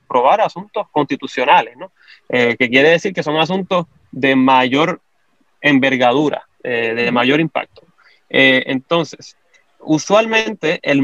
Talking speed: 115 wpm